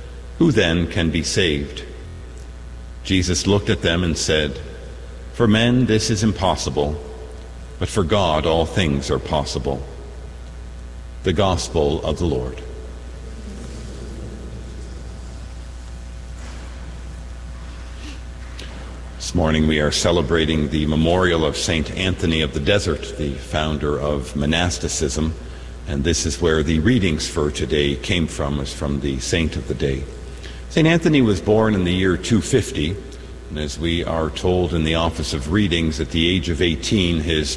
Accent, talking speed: American, 135 wpm